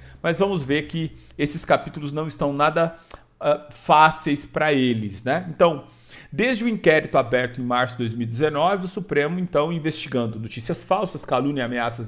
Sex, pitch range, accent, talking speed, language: male, 140-210 Hz, Brazilian, 160 wpm, English